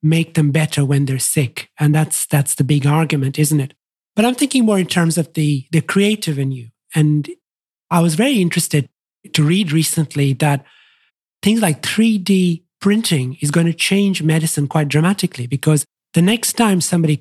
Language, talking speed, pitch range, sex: English, 180 wpm, 145-180 Hz, male